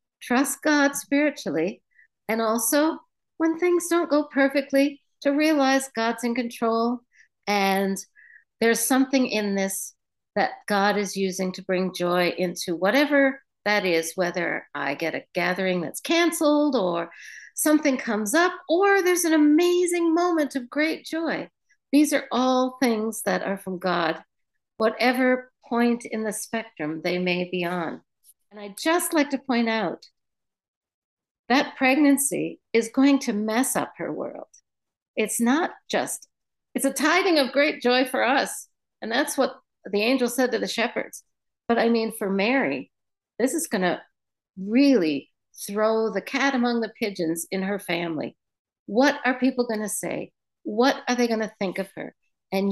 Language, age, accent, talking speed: English, 60-79, American, 155 wpm